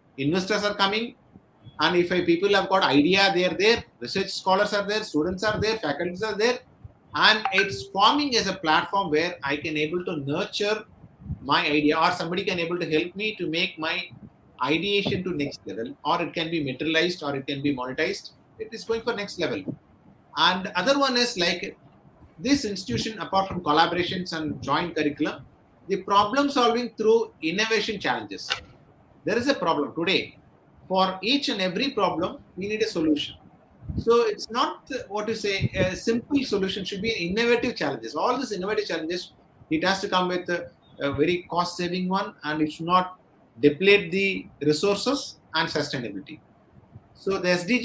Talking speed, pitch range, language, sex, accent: 175 wpm, 155-215 Hz, English, male, Indian